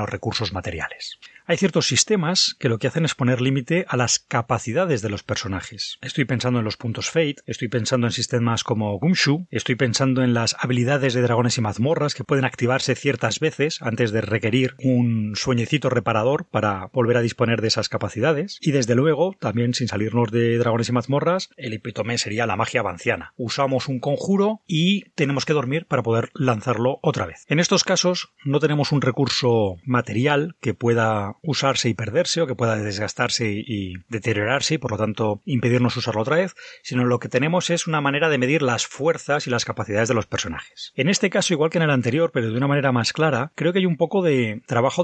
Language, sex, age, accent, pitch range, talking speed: Spanish, male, 30-49, Spanish, 115-150 Hz, 200 wpm